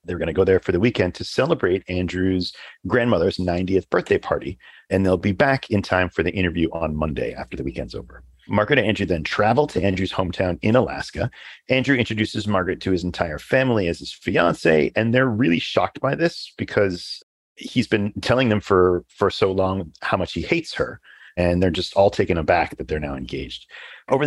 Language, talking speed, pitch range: English, 200 wpm, 90-110 Hz